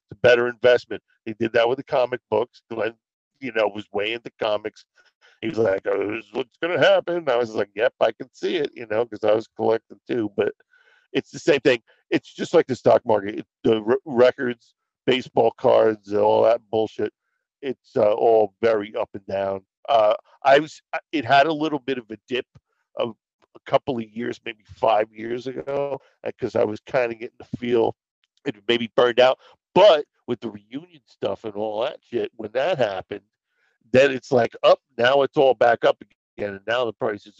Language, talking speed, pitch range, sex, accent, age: English, 205 wpm, 110-140 Hz, male, American, 50-69